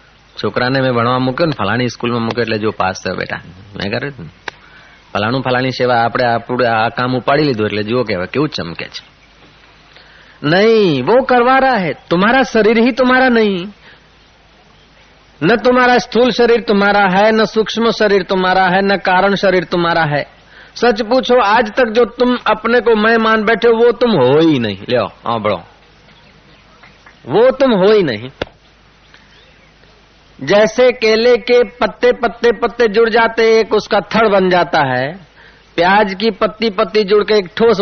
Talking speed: 115 wpm